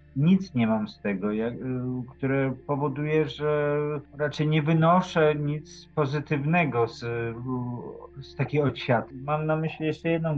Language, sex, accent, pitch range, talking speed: Polish, male, native, 120-150 Hz, 125 wpm